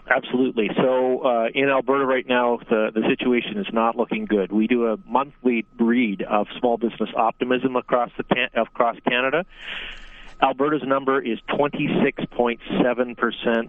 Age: 40-59